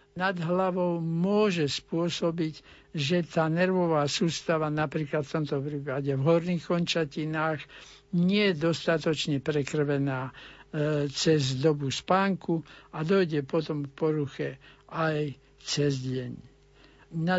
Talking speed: 105 wpm